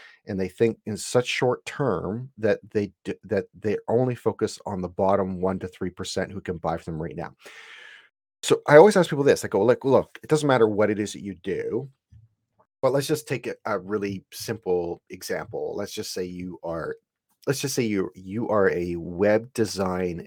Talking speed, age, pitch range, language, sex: 205 wpm, 30-49, 90-115 Hz, English, male